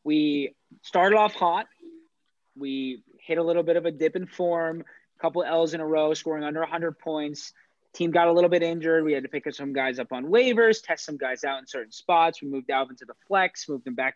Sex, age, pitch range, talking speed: male, 20-39, 140-175 Hz, 240 wpm